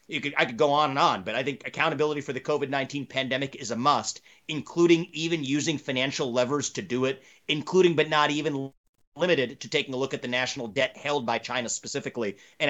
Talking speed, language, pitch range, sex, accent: 205 wpm, English, 135-190 Hz, male, American